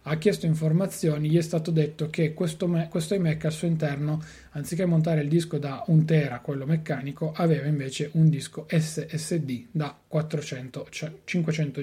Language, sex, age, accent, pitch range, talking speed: Italian, male, 30-49, native, 150-170 Hz, 145 wpm